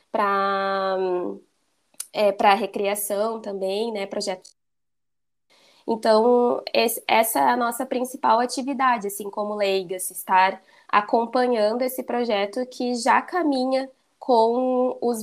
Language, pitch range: Portuguese, 205-245 Hz